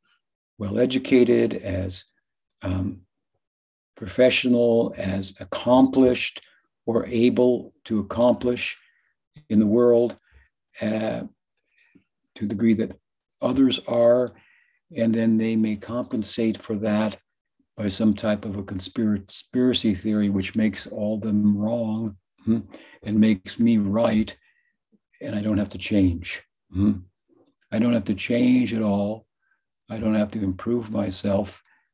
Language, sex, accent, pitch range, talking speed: English, male, American, 100-120 Hz, 115 wpm